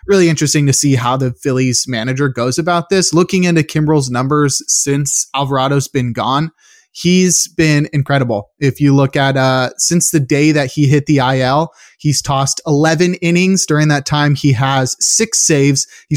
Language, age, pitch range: English, 20-39, 130-155 Hz